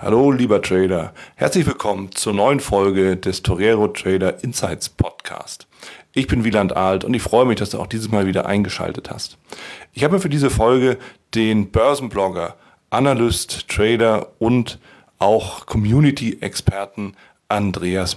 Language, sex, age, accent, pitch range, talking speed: German, male, 40-59, German, 95-115 Hz, 140 wpm